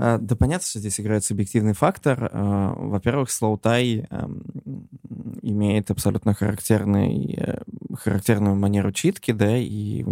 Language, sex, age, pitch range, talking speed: Russian, male, 20-39, 105-115 Hz, 100 wpm